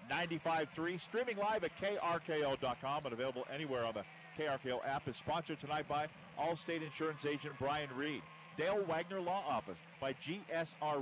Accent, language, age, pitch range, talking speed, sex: American, English, 50-69, 145-170 Hz, 145 wpm, male